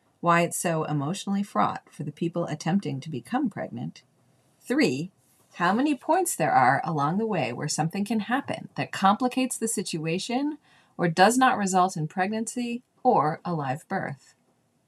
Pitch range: 150-220 Hz